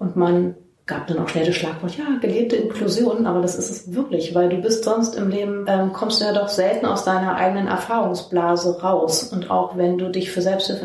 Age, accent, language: 30-49, German, German